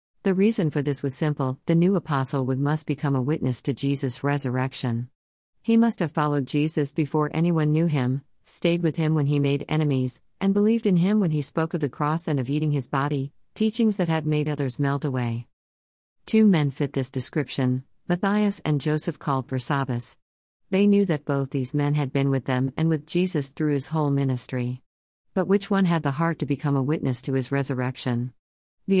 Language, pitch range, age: Malayalam, 130-160 Hz, 50-69